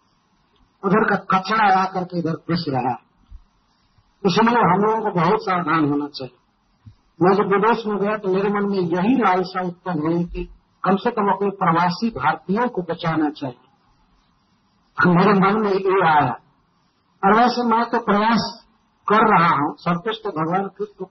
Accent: native